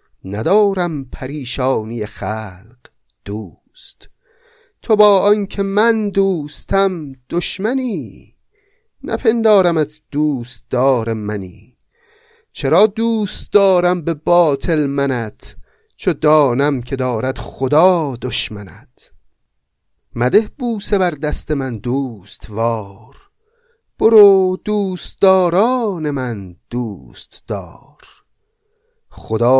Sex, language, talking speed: male, Persian, 80 wpm